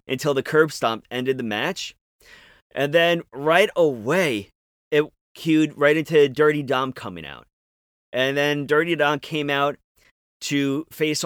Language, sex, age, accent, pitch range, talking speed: English, male, 30-49, American, 120-150 Hz, 145 wpm